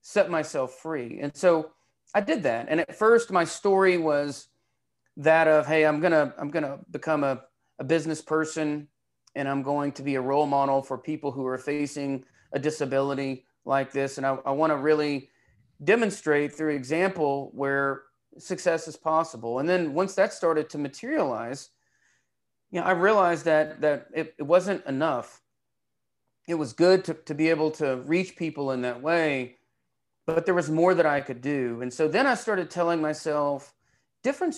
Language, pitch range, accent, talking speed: English, 140-170 Hz, American, 175 wpm